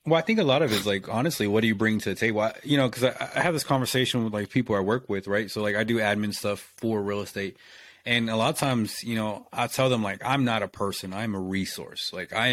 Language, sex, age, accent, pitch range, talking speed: English, male, 30-49, American, 100-120 Hz, 295 wpm